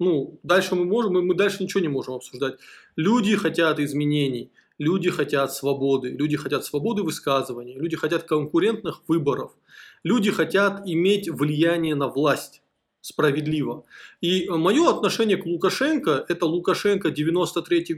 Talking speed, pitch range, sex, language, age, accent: 135 wpm, 150-190 Hz, male, Russian, 20-39, native